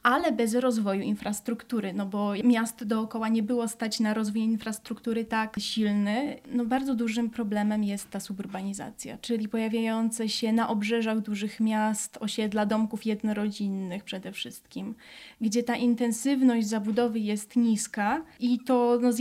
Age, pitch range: 20-39, 210-245 Hz